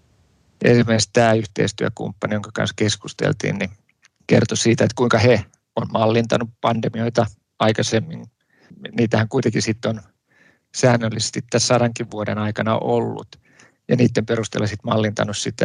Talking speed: 125 wpm